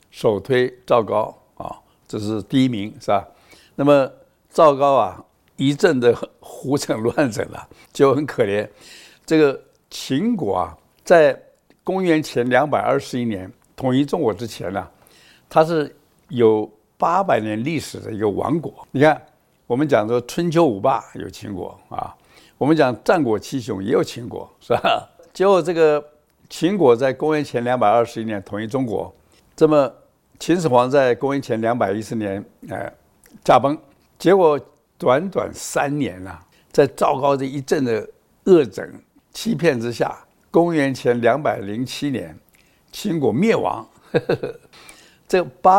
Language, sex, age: Chinese, male, 60-79